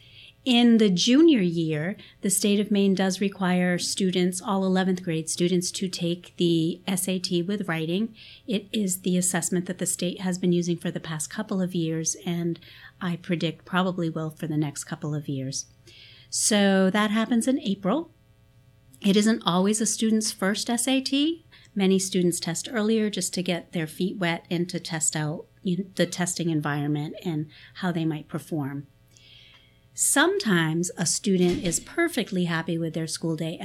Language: English